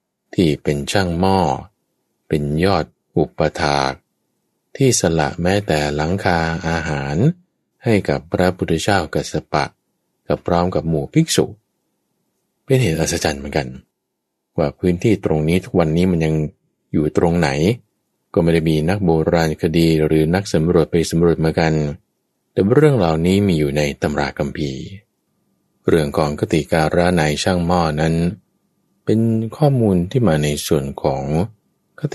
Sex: male